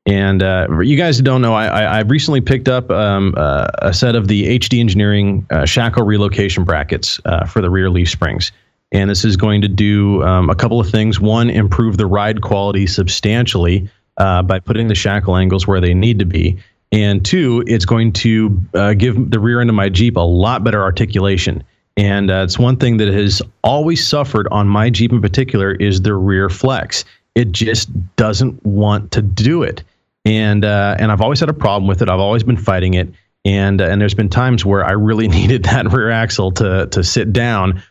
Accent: American